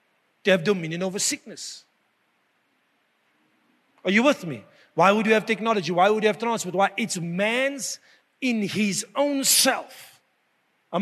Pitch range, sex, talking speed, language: 155-220 Hz, male, 145 wpm, English